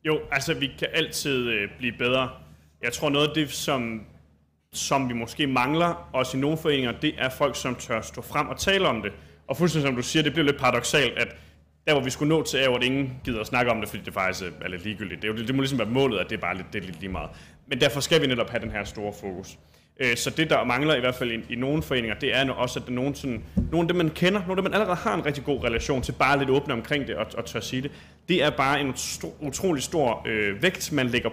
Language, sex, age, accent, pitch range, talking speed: Danish, male, 30-49, native, 115-145 Hz, 275 wpm